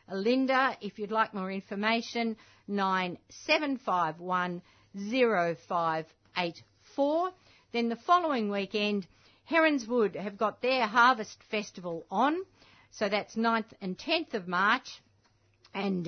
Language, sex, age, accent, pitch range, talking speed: English, female, 50-69, Australian, 190-240 Hz, 95 wpm